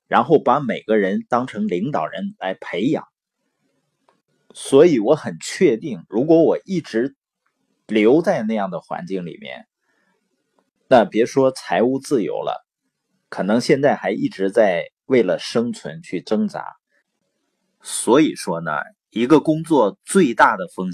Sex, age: male, 30-49